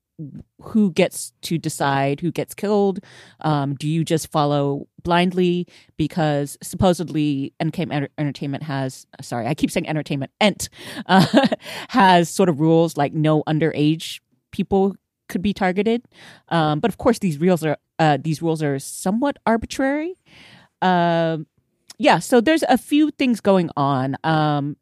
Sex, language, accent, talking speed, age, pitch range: female, English, American, 145 wpm, 30-49, 145-185 Hz